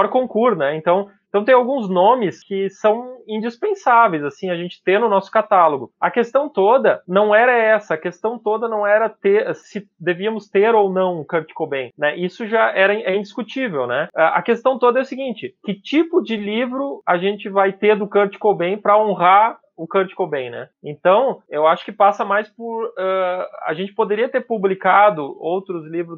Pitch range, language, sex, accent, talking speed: 180-225 Hz, Portuguese, male, Brazilian, 185 wpm